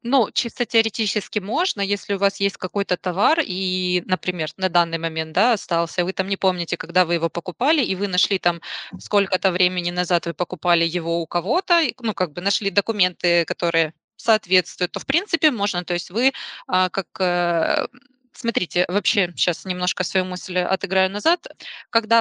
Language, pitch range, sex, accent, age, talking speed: Ukrainian, 180-220 Hz, female, native, 20-39, 165 wpm